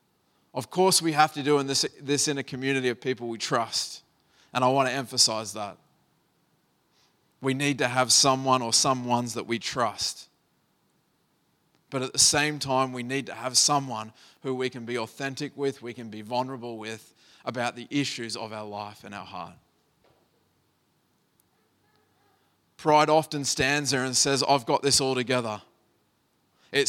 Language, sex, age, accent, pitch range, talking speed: English, male, 20-39, Australian, 120-145 Hz, 165 wpm